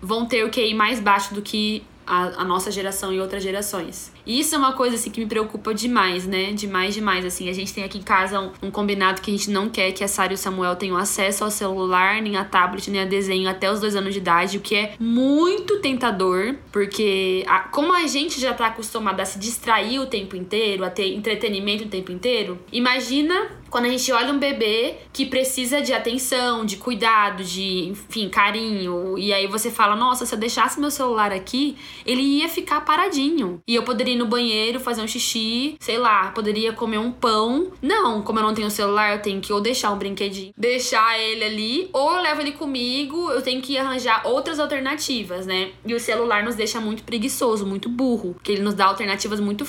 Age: 10-29